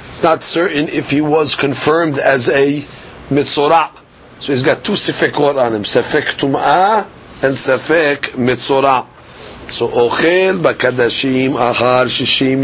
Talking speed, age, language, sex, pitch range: 130 wpm, 40-59, English, male, 130-160 Hz